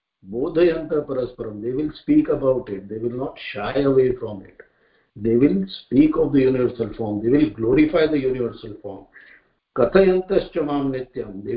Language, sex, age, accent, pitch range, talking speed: English, male, 50-69, Indian, 115-150 Hz, 135 wpm